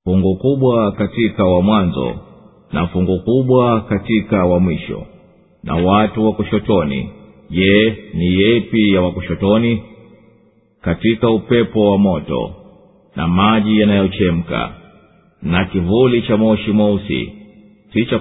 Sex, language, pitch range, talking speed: male, Swahili, 90-110 Hz, 110 wpm